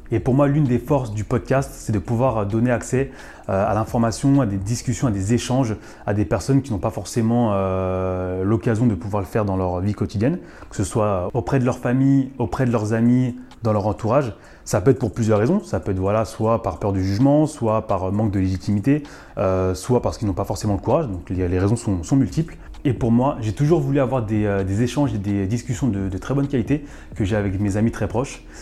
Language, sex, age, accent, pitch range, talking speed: French, male, 20-39, French, 100-125 Hz, 240 wpm